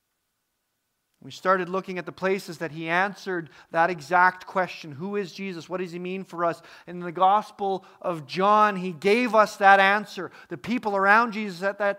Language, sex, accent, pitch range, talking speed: English, male, American, 160-195 Hz, 185 wpm